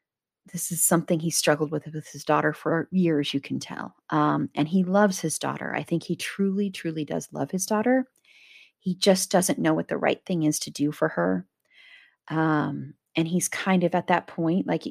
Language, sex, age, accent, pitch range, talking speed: English, female, 30-49, American, 150-175 Hz, 205 wpm